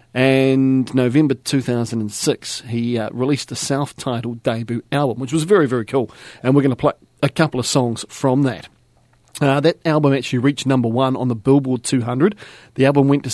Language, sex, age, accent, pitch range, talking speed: English, male, 40-59, Australian, 115-140 Hz, 185 wpm